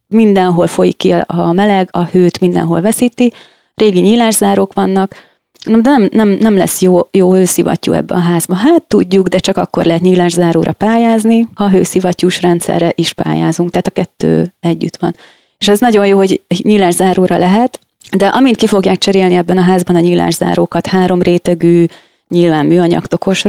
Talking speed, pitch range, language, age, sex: 155 wpm, 175-205 Hz, Hungarian, 30-49, female